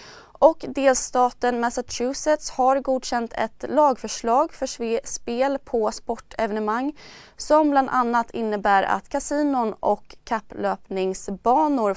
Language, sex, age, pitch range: Swedish, female, 20-39, 205-260 Hz